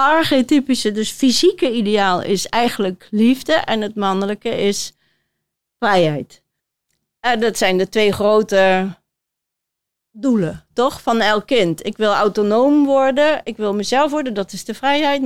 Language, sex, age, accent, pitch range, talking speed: Dutch, female, 40-59, Dutch, 220-280 Hz, 140 wpm